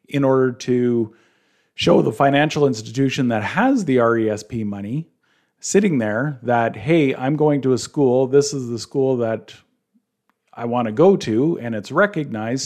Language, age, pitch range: English, 40-59, 115-140 Hz